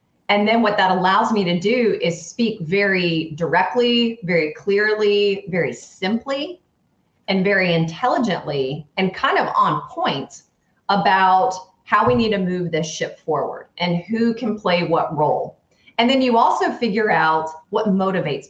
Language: English